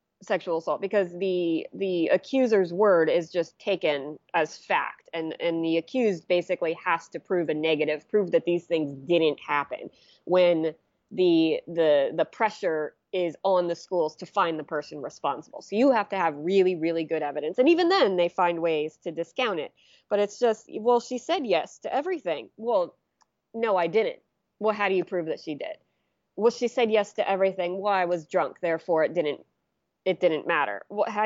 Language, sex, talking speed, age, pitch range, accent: English, female, 190 wpm, 20-39, 170-230 Hz, American